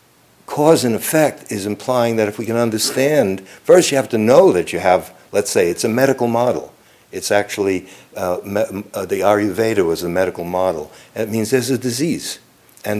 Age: 60-79